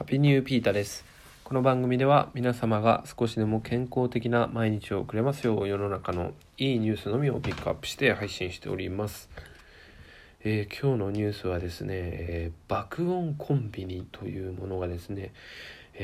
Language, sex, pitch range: Japanese, male, 90-120 Hz